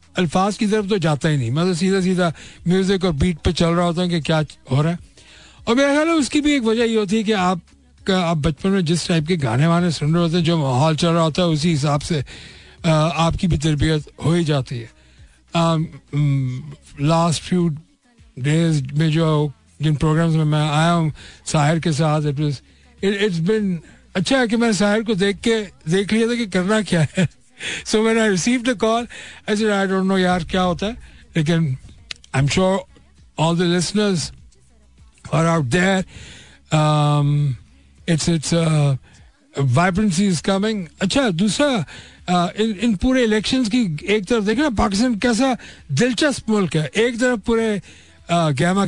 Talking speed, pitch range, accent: 165 wpm, 155-205 Hz, native